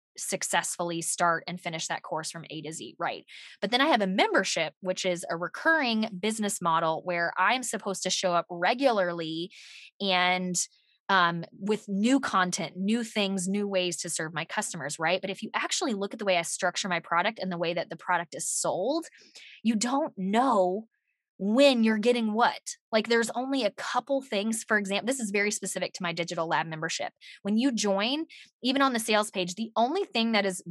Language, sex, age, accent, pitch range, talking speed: English, female, 20-39, American, 180-230 Hz, 195 wpm